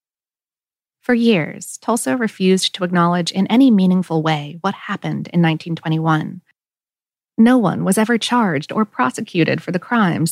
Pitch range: 170-230 Hz